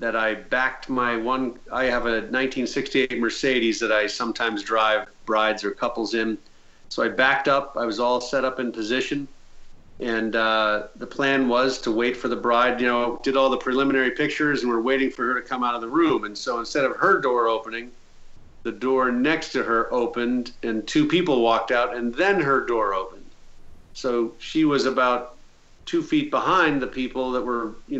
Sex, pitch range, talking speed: male, 115-140 Hz, 195 wpm